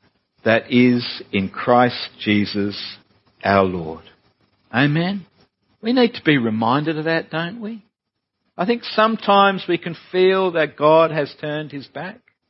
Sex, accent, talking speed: male, Australian, 140 wpm